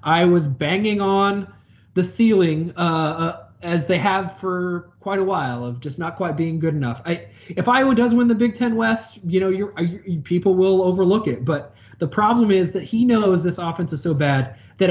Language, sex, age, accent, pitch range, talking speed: English, male, 20-39, American, 135-195 Hz, 210 wpm